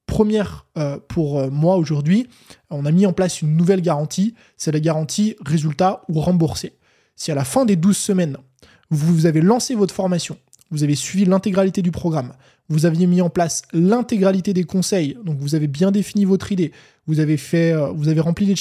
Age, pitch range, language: 20-39, 155-195 Hz, French